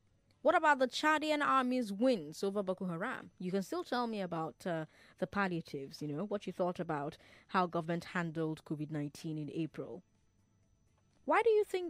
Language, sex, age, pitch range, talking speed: English, female, 20-39, 155-240 Hz, 170 wpm